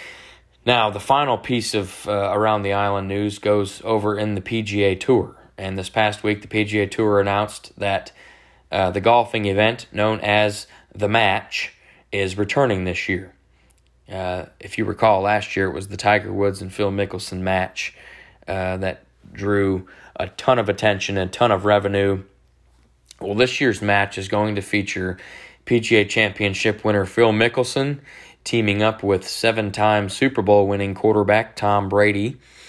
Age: 20-39